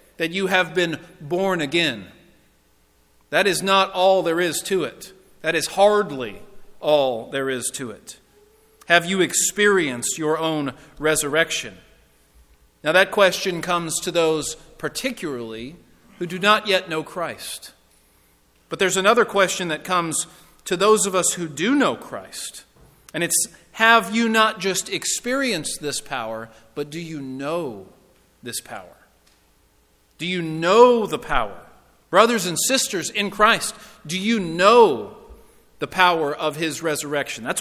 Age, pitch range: 40-59, 145-200 Hz